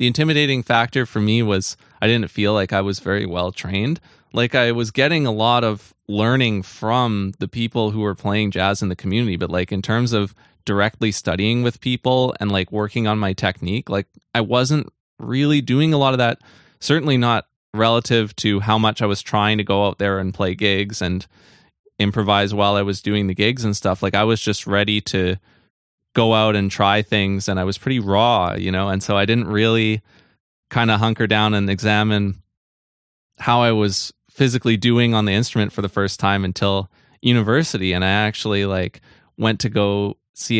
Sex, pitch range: male, 100-115 Hz